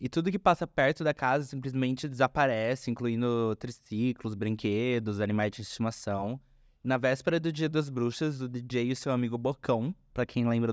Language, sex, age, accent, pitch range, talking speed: Portuguese, male, 20-39, Brazilian, 105-130 Hz, 175 wpm